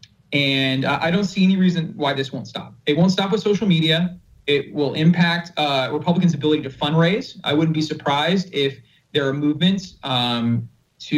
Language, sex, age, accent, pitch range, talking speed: English, male, 30-49, American, 135-175 Hz, 185 wpm